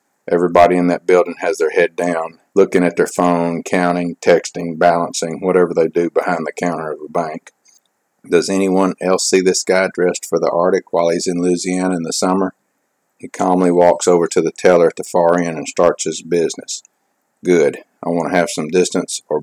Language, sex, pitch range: English, male, 85-105 Hz